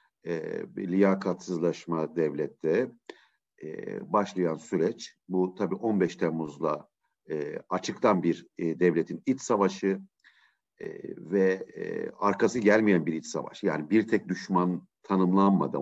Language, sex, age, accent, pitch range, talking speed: Turkish, male, 50-69, native, 90-130 Hz, 95 wpm